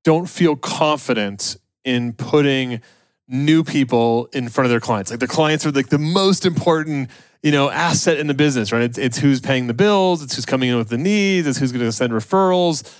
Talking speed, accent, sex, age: 210 wpm, American, male, 30-49